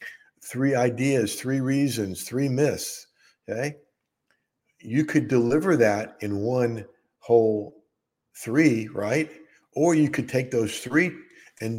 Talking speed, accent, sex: 115 wpm, American, male